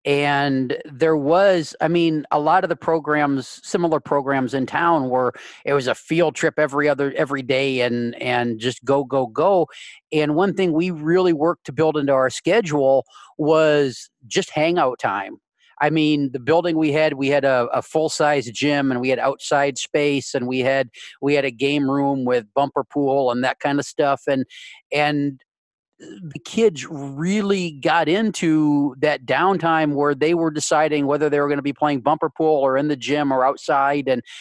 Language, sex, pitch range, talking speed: English, male, 130-155 Hz, 185 wpm